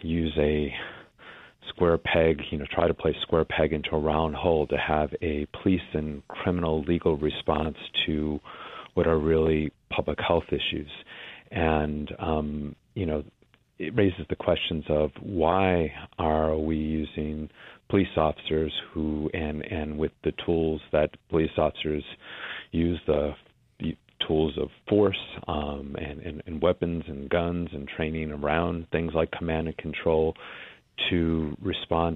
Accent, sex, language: American, male, English